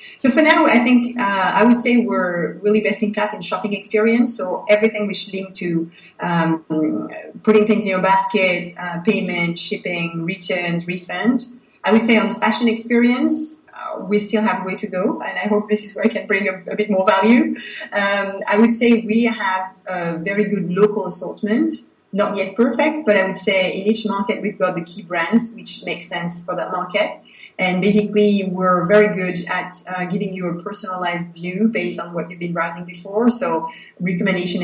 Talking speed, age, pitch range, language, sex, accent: 200 wpm, 30-49, 180-215 Hz, English, female, French